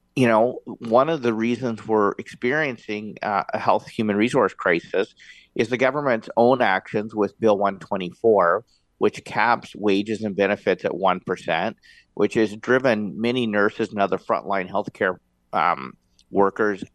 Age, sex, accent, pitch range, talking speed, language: 50-69, male, American, 100-115 Hz, 150 wpm, English